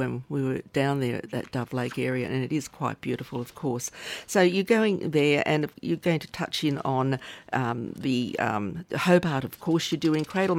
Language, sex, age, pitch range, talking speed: English, female, 50-69, 130-160 Hz, 210 wpm